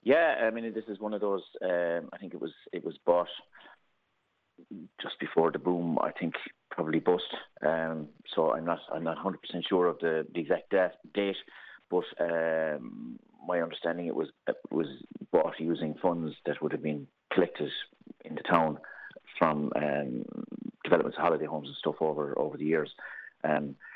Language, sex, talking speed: English, male, 170 wpm